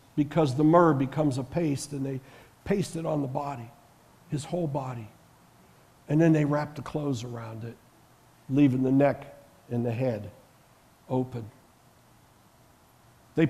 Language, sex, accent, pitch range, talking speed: English, male, American, 130-170 Hz, 140 wpm